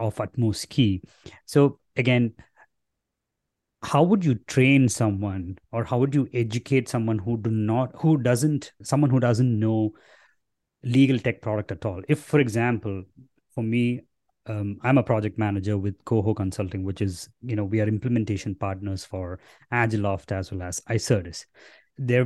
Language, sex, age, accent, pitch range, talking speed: English, male, 20-39, Indian, 105-130 Hz, 155 wpm